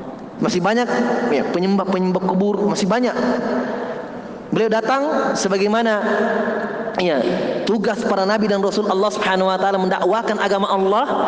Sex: male